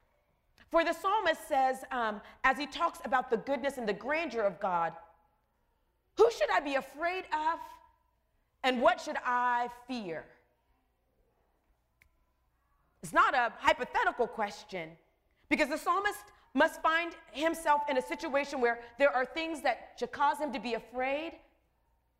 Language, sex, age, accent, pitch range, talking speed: English, female, 30-49, American, 230-320 Hz, 140 wpm